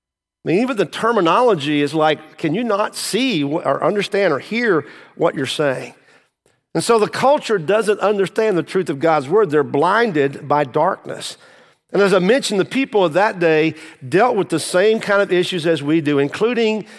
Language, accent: English, American